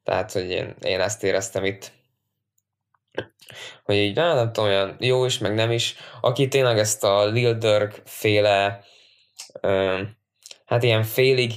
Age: 20-39